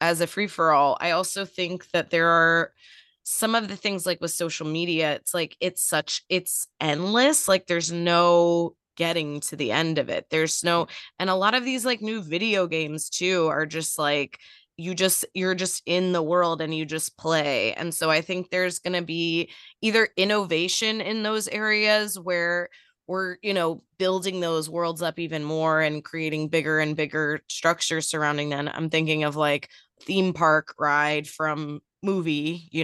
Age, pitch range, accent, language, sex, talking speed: 20-39, 155-185 Hz, American, English, female, 185 wpm